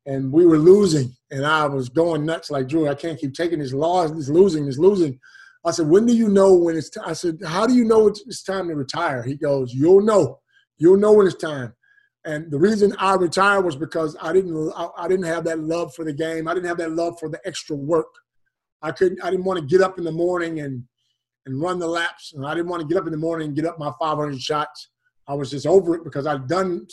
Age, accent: 30-49, American